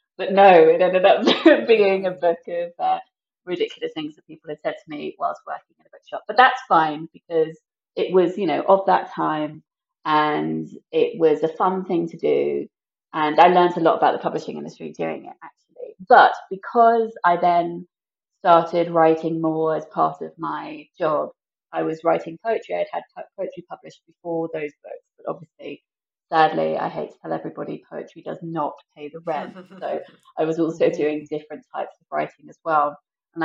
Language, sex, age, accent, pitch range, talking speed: English, female, 30-49, British, 160-235 Hz, 185 wpm